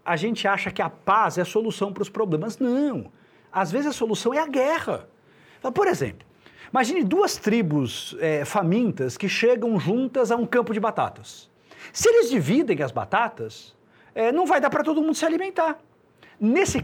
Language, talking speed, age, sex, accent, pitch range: Portuguese, 170 wpm, 50-69, male, Brazilian, 200-270 Hz